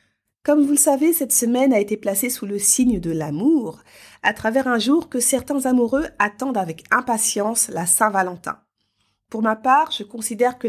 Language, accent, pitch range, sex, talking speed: French, French, 200-255 Hz, female, 180 wpm